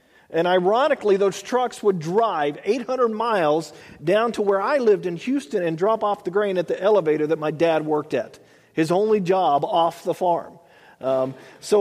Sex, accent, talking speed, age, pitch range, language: male, American, 185 wpm, 40-59, 160-205 Hz, English